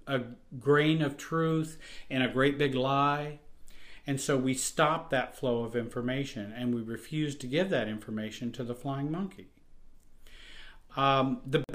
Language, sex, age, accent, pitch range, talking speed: English, male, 50-69, American, 120-145 Hz, 150 wpm